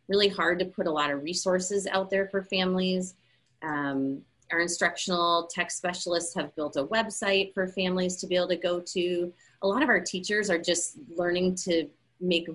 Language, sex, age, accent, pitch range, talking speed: English, female, 30-49, American, 155-185 Hz, 185 wpm